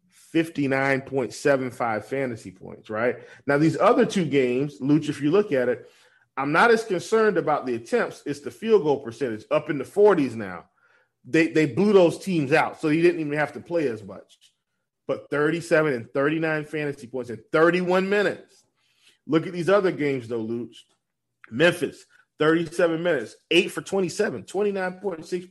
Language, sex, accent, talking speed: English, male, American, 165 wpm